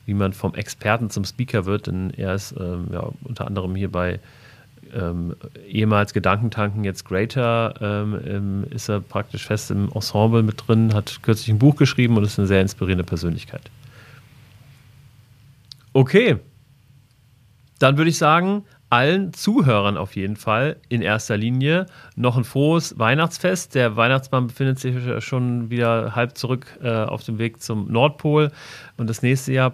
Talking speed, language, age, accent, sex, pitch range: 150 wpm, German, 40-59, German, male, 105-135 Hz